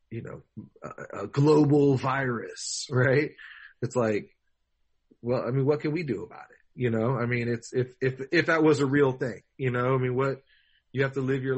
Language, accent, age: English, American, 30-49